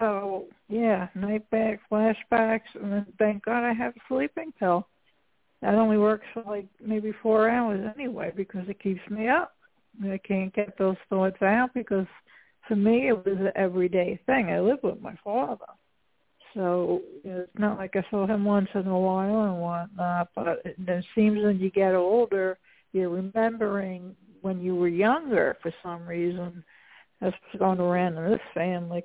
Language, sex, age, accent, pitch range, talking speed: English, female, 60-79, American, 190-220 Hz, 170 wpm